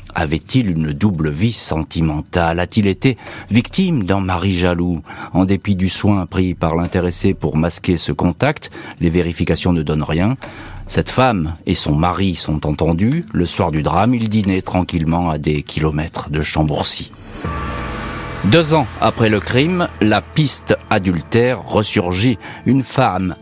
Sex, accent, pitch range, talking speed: male, French, 90-115 Hz, 145 wpm